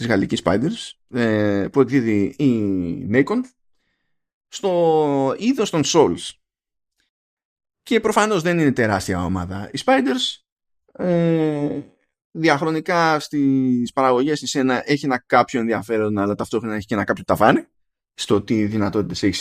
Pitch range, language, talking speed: 110-155 Hz, Greek, 110 wpm